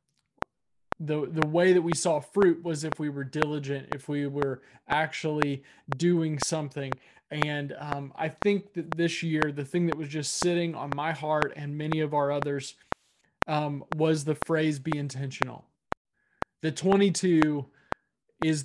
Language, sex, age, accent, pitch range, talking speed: English, male, 20-39, American, 145-165 Hz, 155 wpm